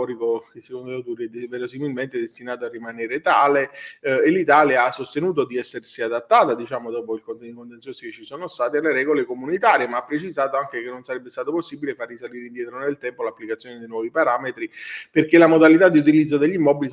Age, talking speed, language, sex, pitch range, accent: 30-49, 190 wpm, Italian, male, 125-160 Hz, native